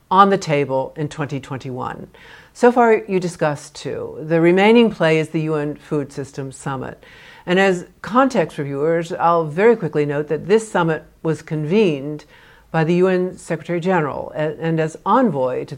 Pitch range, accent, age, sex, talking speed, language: 145-180 Hz, American, 60-79, female, 155 wpm, English